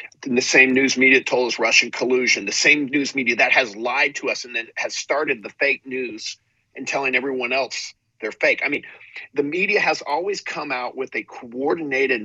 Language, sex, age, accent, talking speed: English, male, 50-69, American, 200 wpm